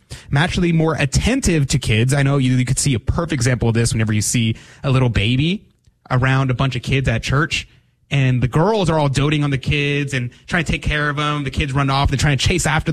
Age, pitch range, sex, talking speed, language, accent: 20-39, 120-150 Hz, male, 250 wpm, English, American